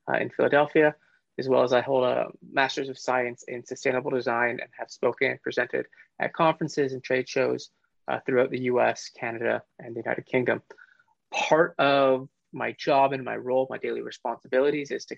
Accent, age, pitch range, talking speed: American, 20-39, 115-135 Hz, 180 wpm